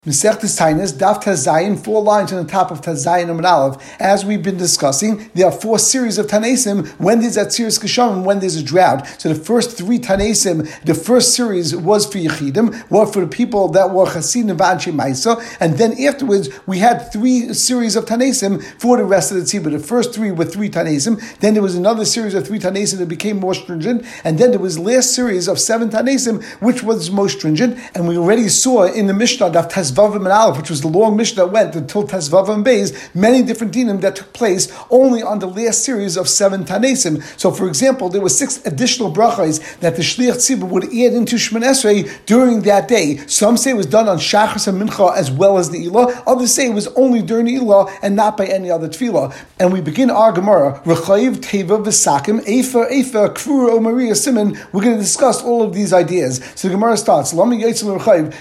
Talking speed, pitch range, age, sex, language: 215 wpm, 185-230 Hz, 50-69, male, English